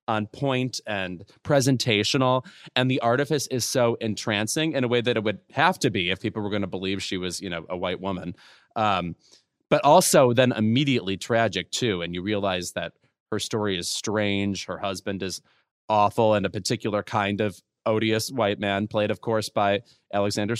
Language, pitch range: English, 100-125 Hz